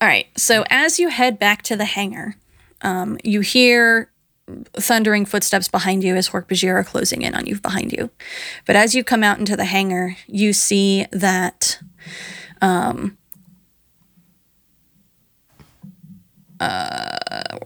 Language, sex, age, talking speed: English, female, 20-39, 135 wpm